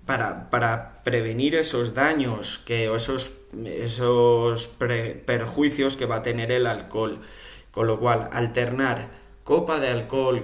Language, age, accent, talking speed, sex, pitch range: Spanish, 20-39, Spanish, 130 wpm, male, 110-130 Hz